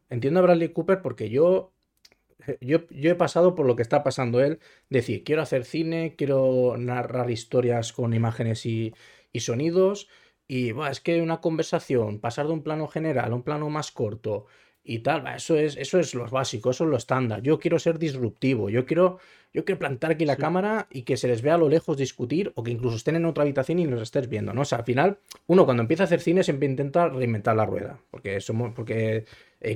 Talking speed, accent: 220 wpm, Spanish